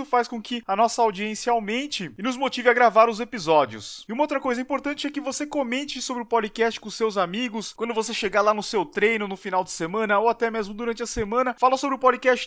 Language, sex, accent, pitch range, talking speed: Portuguese, male, Brazilian, 210-245 Hz, 240 wpm